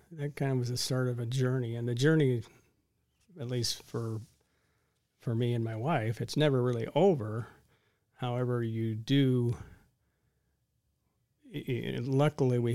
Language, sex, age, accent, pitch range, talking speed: English, male, 50-69, American, 115-135 Hz, 140 wpm